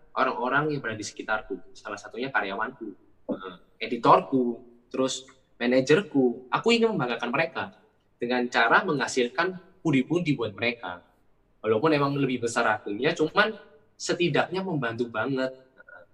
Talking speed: 110 wpm